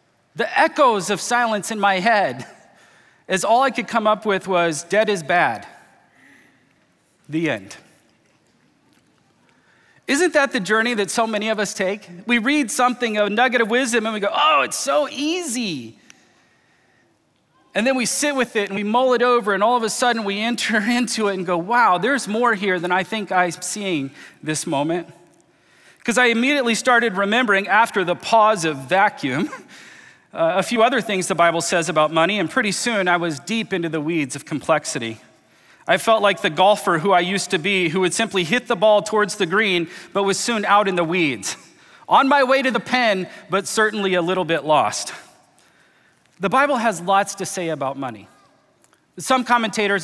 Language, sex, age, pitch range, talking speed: English, male, 40-59, 180-235 Hz, 185 wpm